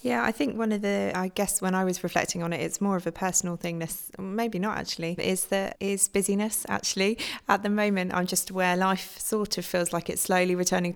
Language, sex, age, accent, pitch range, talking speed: English, female, 20-39, British, 170-195 Hz, 230 wpm